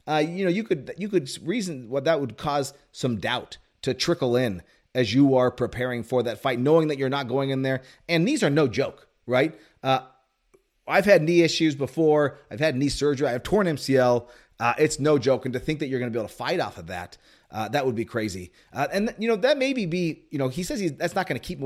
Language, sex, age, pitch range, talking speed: English, male, 30-49, 120-155 Hz, 260 wpm